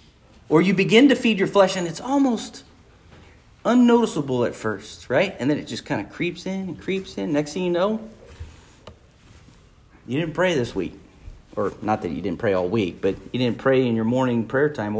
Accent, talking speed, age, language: American, 205 wpm, 40-59, English